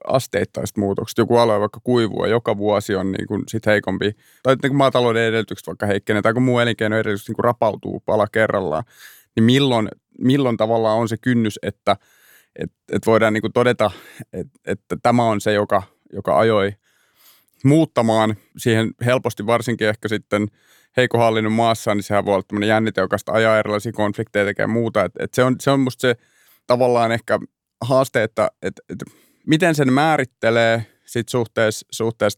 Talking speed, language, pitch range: 160 wpm, Finnish, 105-120 Hz